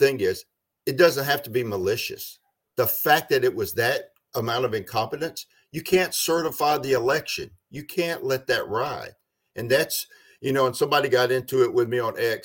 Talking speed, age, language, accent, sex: 195 wpm, 50-69, English, American, male